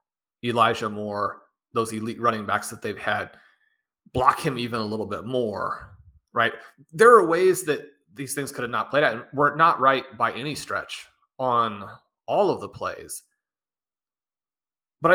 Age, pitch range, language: 30-49, 115-145 Hz, English